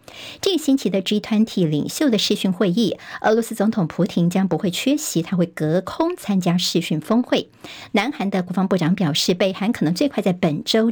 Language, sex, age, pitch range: Chinese, male, 50-69, 175-240 Hz